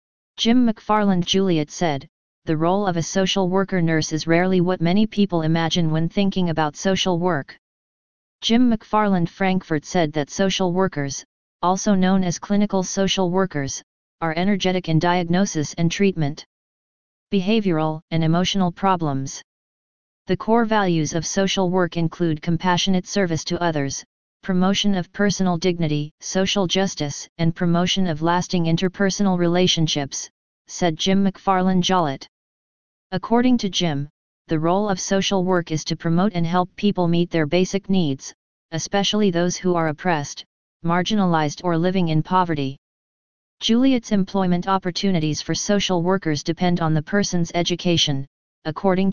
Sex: female